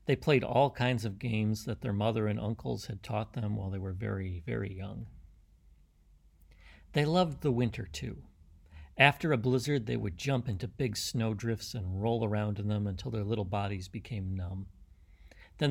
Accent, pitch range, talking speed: American, 95-125 Hz, 180 wpm